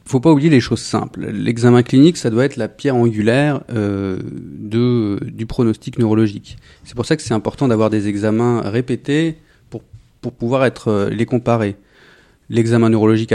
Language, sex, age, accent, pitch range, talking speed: French, male, 30-49, French, 105-130 Hz, 175 wpm